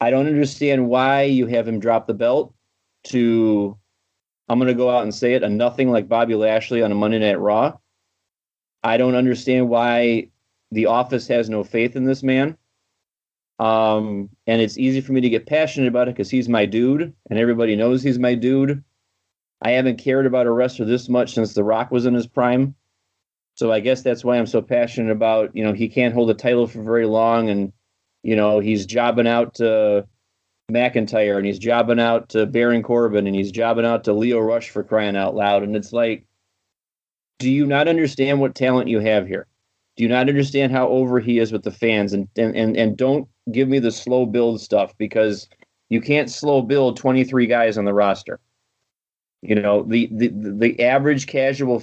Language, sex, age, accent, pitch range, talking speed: English, male, 30-49, American, 110-125 Hz, 200 wpm